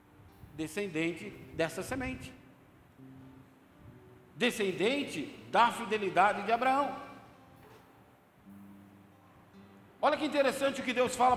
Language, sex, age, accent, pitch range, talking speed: Portuguese, male, 60-79, Brazilian, 195-275 Hz, 80 wpm